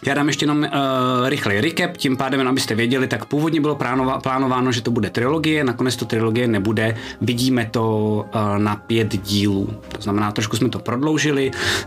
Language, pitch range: Czech, 110-135 Hz